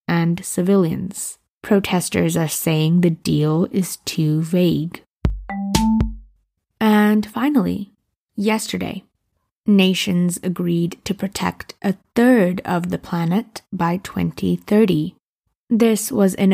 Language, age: English, 20-39